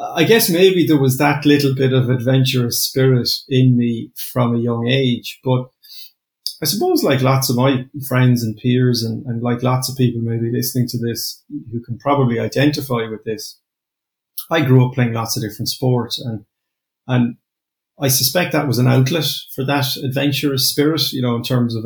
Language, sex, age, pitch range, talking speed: English, male, 30-49, 115-130 Hz, 185 wpm